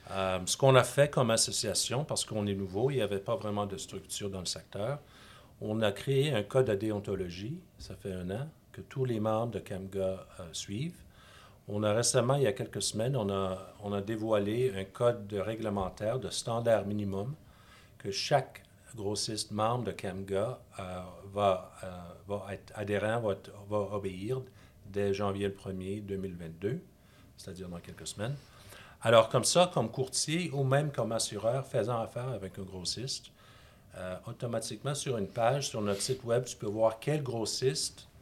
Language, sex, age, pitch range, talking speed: French, male, 50-69, 100-120 Hz, 175 wpm